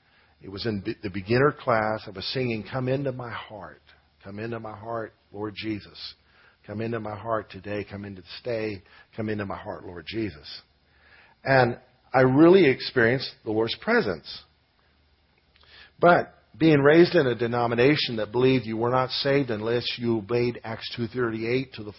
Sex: male